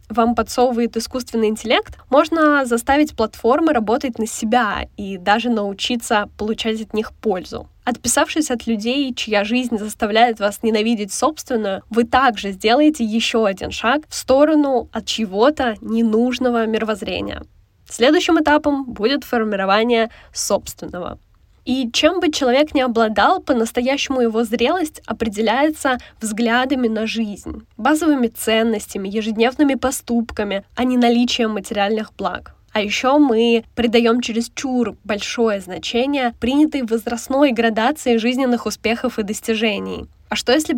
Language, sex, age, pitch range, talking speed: Russian, female, 10-29, 220-260 Hz, 120 wpm